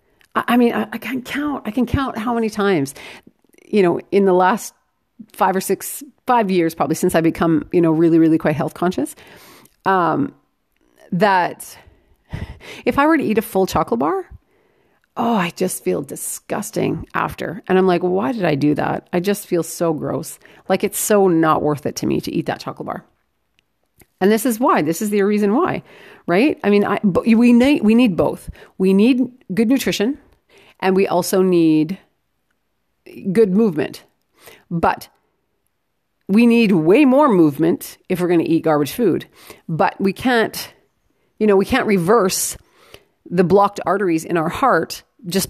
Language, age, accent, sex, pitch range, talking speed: English, 40-59, American, female, 170-225 Hz, 175 wpm